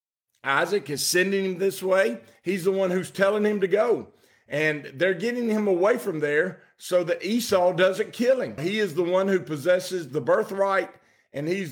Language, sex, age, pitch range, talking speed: English, male, 50-69, 155-195 Hz, 190 wpm